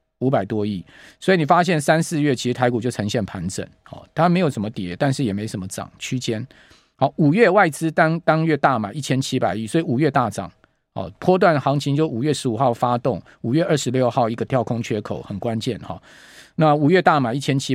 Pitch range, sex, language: 115-155 Hz, male, Chinese